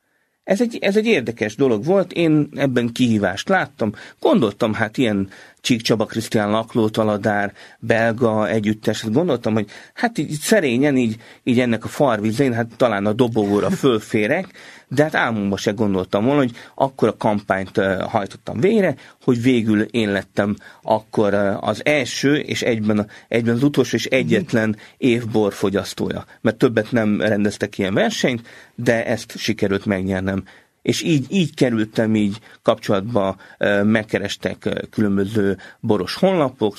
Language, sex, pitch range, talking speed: Hungarian, male, 105-125 Hz, 135 wpm